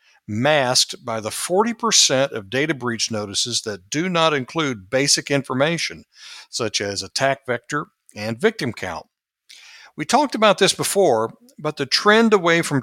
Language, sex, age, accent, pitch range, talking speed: English, male, 60-79, American, 110-155 Hz, 145 wpm